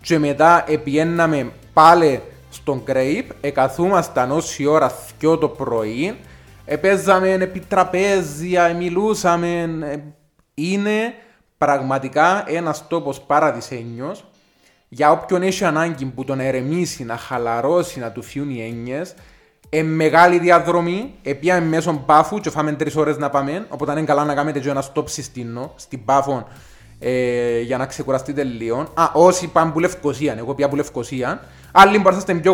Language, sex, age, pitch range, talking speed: Greek, male, 20-39, 125-165 Hz, 135 wpm